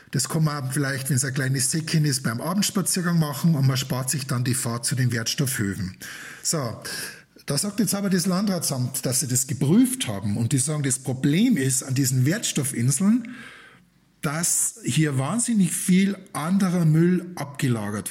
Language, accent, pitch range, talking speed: German, German, 130-175 Hz, 170 wpm